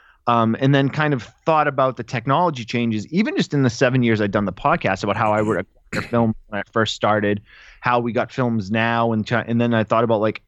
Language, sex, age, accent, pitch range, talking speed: English, male, 20-39, American, 110-135 Hz, 240 wpm